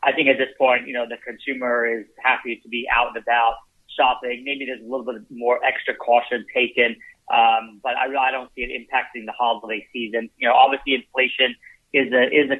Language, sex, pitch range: English, male, 120-130 Hz